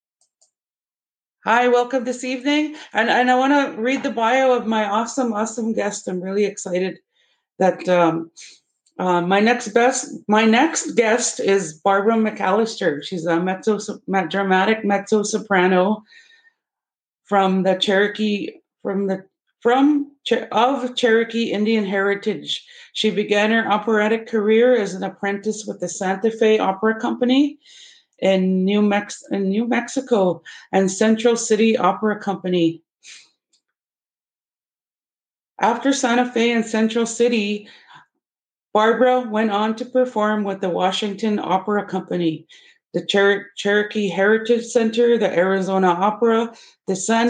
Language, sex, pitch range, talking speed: English, female, 195-235 Hz, 120 wpm